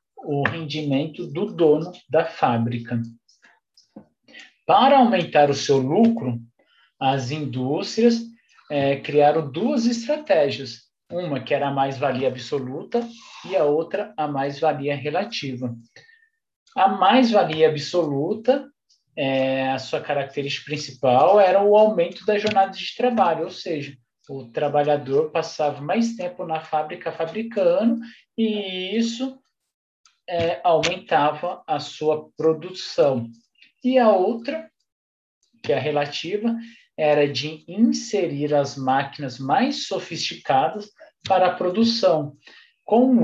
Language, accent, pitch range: Portuguese, Brazilian, 145-215 Hz